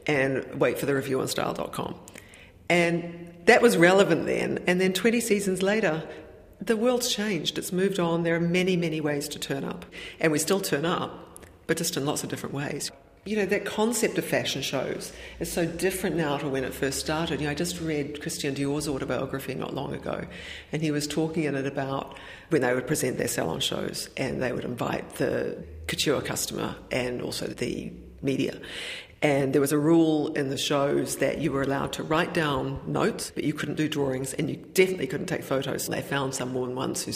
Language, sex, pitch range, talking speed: English, female, 140-185 Hz, 205 wpm